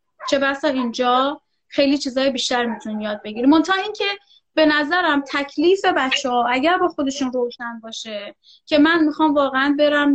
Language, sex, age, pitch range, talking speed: Persian, female, 30-49, 245-295 Hz, 150 wpm